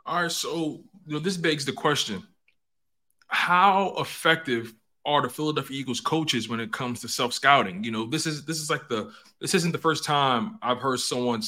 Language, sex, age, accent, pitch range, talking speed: English, male, 20-39, American, 110-135 Hz, 195 wpm